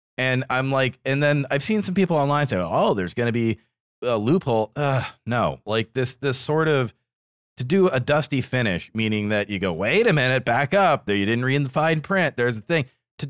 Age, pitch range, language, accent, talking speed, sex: 30-49, 100-135 Hz, English, American, 230 wpm, male